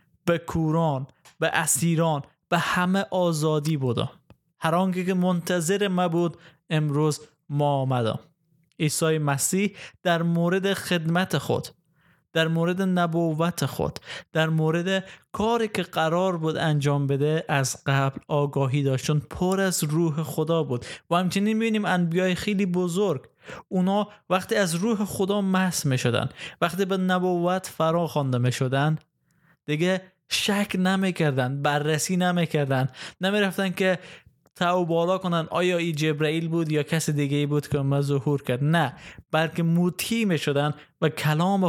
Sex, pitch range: male, 150-180 Hz